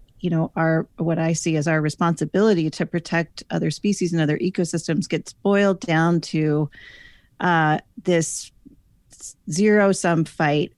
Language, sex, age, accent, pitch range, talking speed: English, female, 30-49, American, 155-185 Hz, 135 wpm